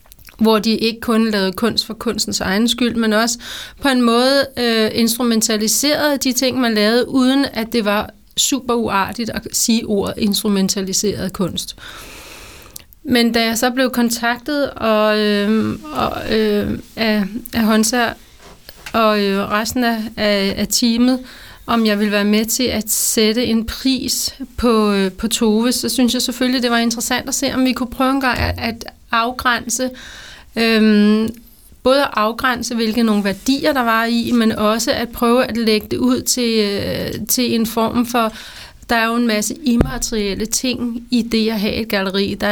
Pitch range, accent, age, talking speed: 210-240 Hz, native, 30-49, 160 wpm